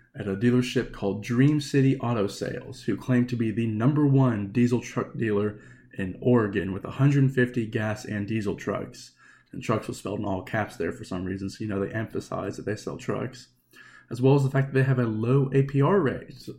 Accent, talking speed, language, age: American, 210 wpm, English, 20-39